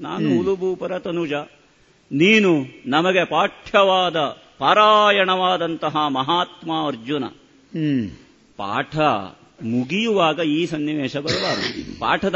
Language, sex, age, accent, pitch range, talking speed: Kannada, male, 50-69, native, 150-200 Hz, 75 wpm